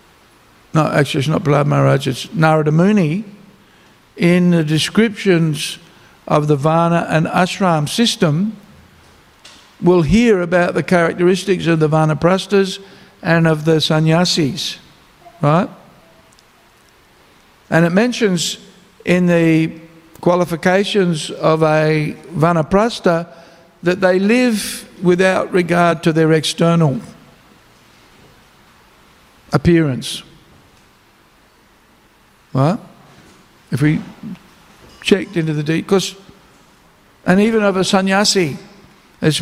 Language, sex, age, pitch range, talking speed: English, male, 60-79, 155-185 Hz, 95 wpm